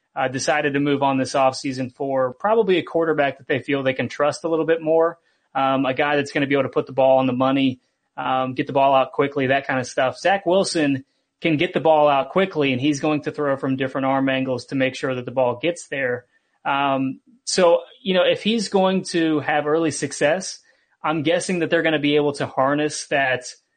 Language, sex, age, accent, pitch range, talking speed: English, male, 30-49, American, 135-155 Hz, 235 wpm